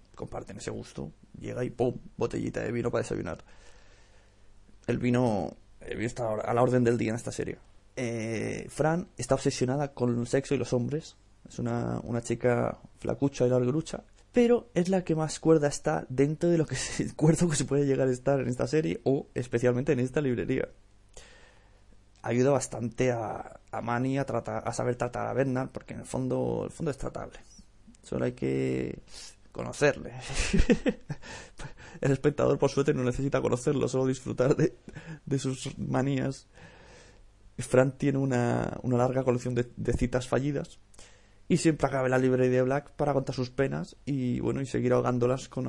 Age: 20-39